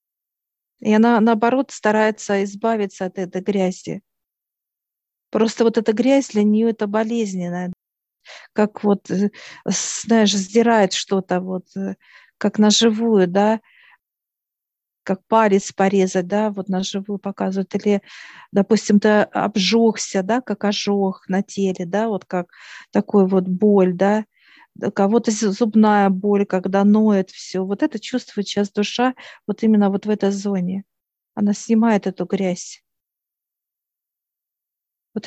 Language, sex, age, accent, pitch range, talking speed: Russian, female, 50-69, native, 195-220 Hz, 120 wpm